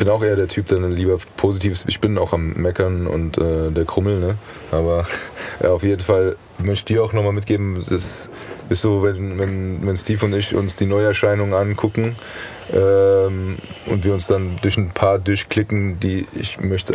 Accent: German